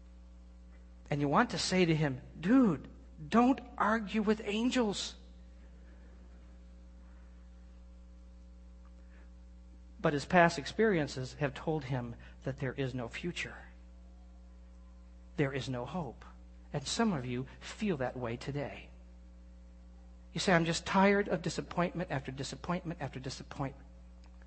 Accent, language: American, English